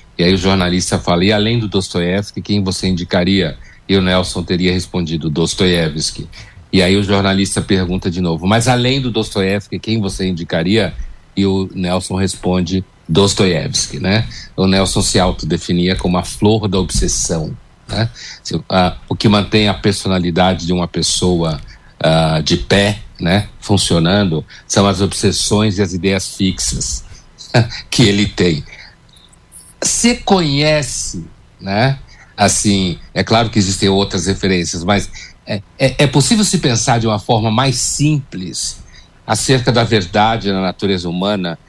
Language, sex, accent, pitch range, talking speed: Portuguese, male, Brazilian, 90-115 Hz, 140 wpm